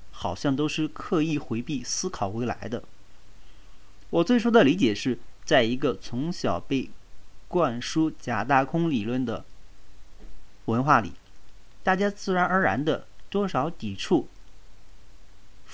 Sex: male